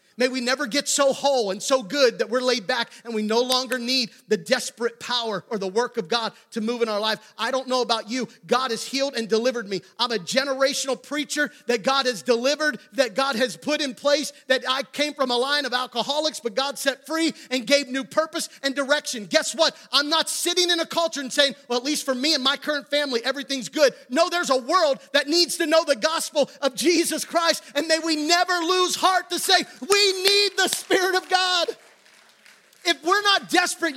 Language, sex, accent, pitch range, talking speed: English, male, American, 245-315 Hz, 225 wpm